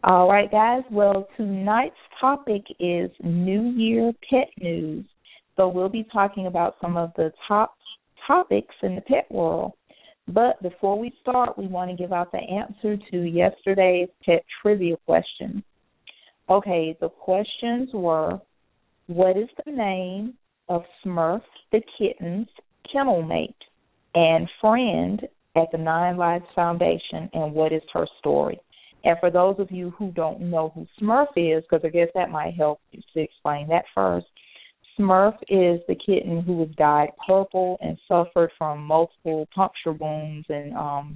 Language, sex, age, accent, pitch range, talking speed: English, female, 40-59, American, 160-200 Hz, 155 wpm